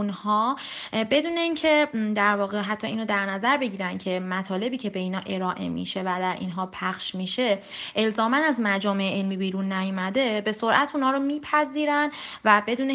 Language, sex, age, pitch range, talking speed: Persian, female, 30-49, 185-245 Hz, 170 wpm